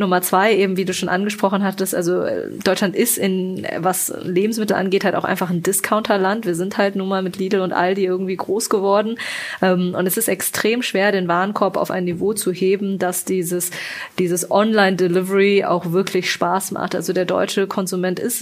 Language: German